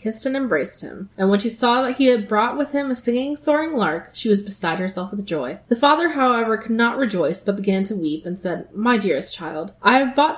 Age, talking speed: 20-39, 245 wpm